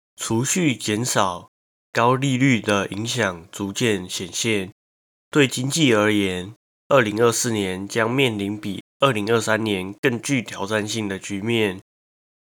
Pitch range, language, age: 95-120 Hz, Chinese, 20-39